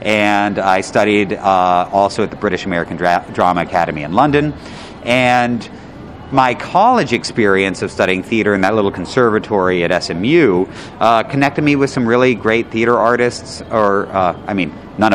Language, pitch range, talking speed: English, 95-130 Hz, 160 wpm